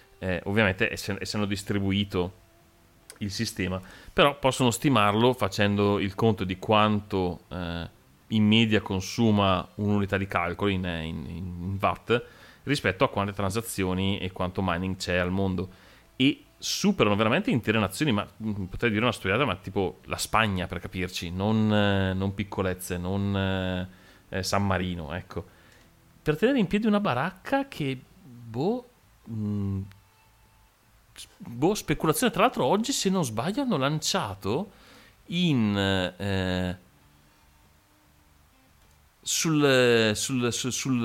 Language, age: Italian, 30-49